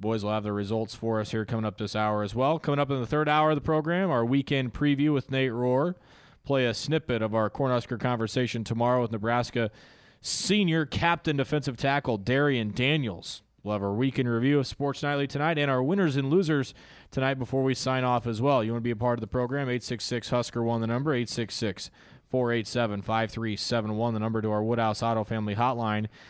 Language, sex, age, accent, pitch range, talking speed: English, male, 20-39, American, 115-150 Hz, 200 wpm